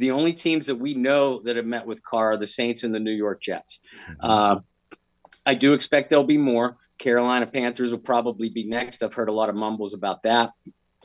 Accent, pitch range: American, 115-135 Hz